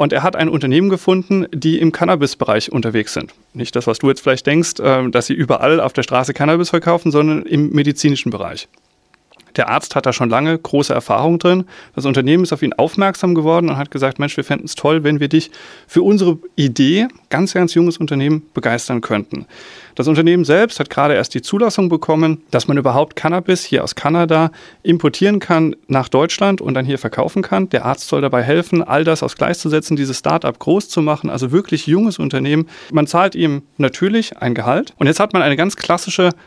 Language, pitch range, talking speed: German, 135-175 Hz, 200 wpm